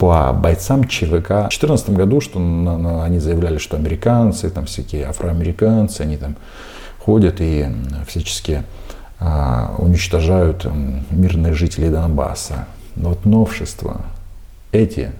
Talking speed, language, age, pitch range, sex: 105 wpm, Russian, 50-69, 85-100 Hz, male